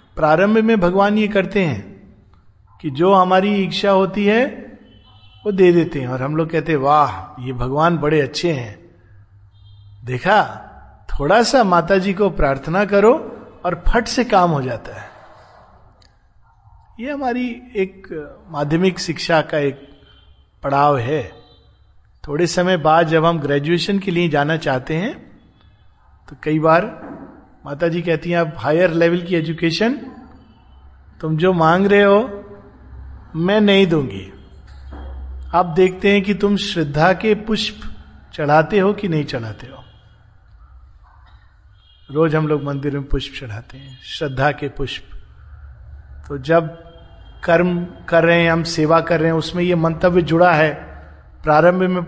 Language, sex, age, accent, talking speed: Hindi, male, 50-69, native, 140 wpm